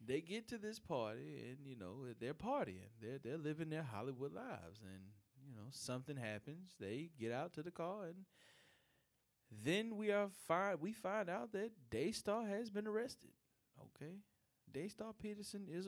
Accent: American